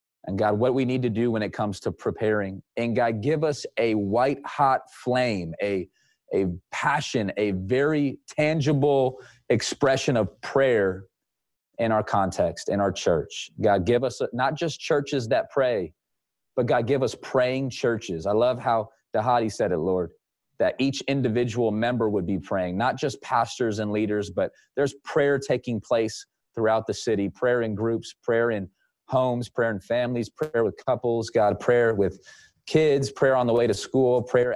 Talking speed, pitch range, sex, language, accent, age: 170 wpm, 105-130 Hz, male, English, American, 30-49